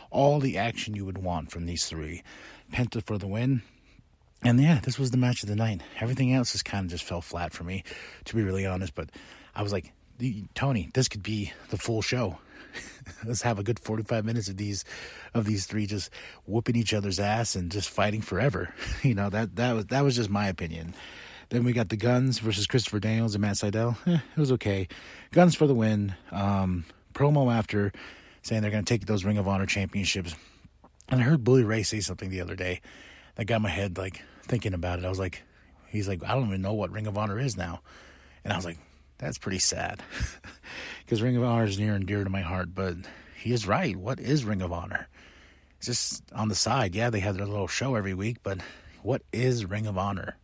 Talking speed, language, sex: 225 wpm, English, male